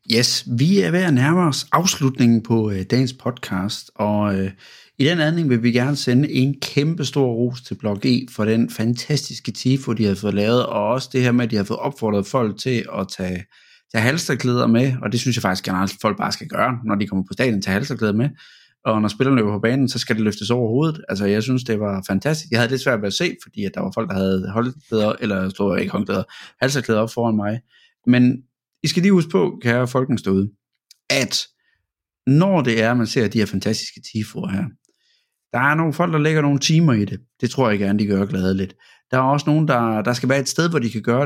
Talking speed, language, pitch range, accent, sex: 245 wpm, Danish, 110-140 Hz, native, male